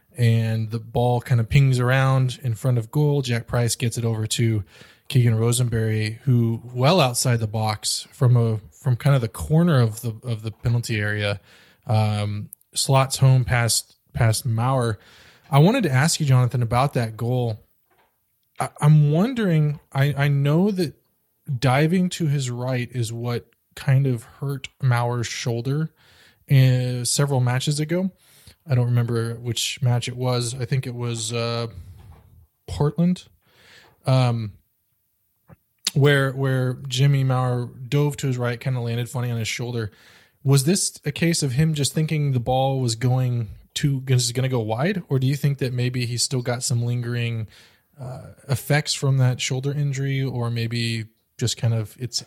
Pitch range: 115-140 Hz